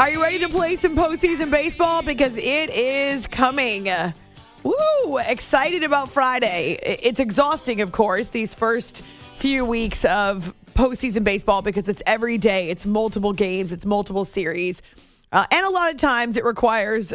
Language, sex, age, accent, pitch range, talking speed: English, female, 30-49, American, 210-285 Hz, 160 wpm